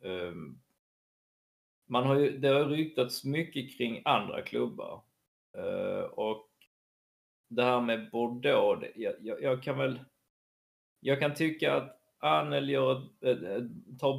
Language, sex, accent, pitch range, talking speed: Swedish, male, native, 110-165 Hz, 125 wpm